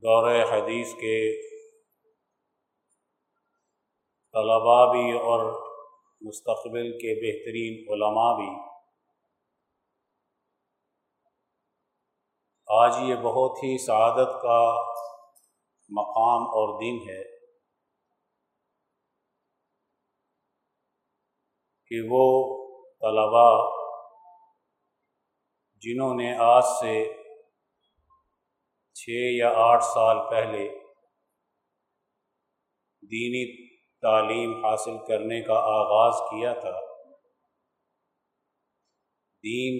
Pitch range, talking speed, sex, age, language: 115-135 Hz, 65 wpm, male, 50-69, Urdu